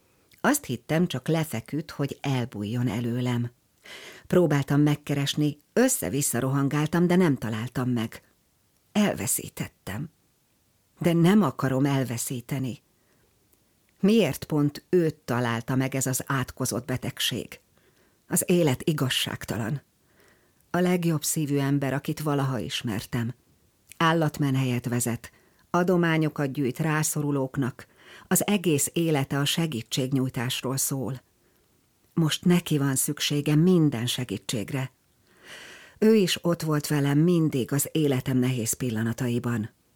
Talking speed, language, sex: 100 wpm, Hungarian, female